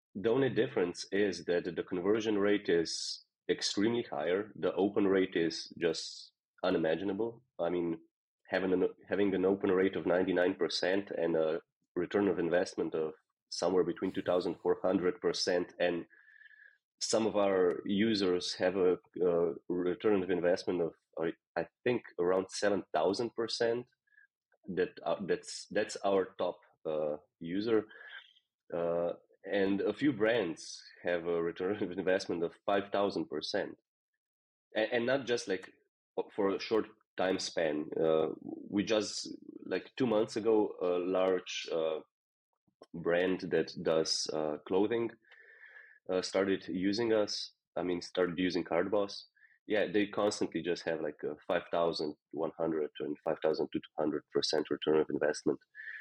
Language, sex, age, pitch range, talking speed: English, male, 30-49, 85-115 Hz, 145 wpm